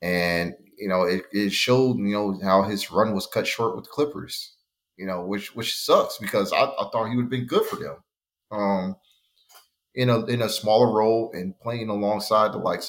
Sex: male